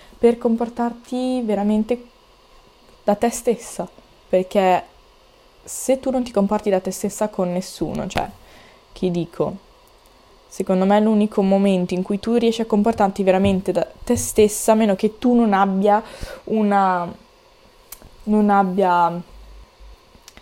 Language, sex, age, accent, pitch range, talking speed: Italian, female, 20-39, native, 200-265 Hz, 130 wpm